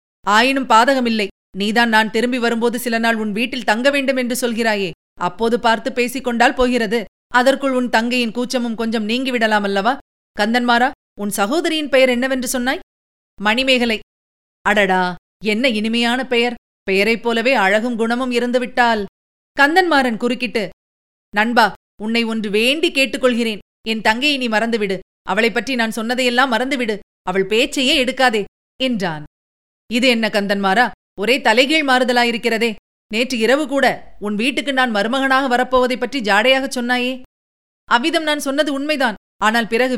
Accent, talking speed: native, 125 wpm